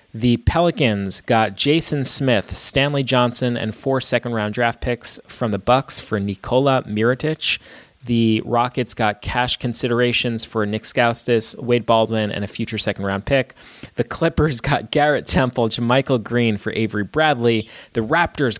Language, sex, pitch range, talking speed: English, male, 110-135 Hz, 150 wpm